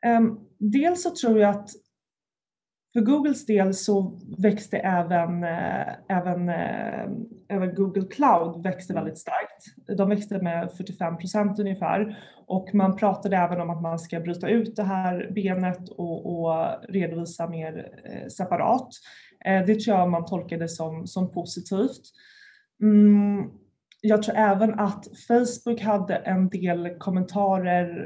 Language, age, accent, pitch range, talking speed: Swedish, 20-39, native, 175-210 Hz, 125 wpm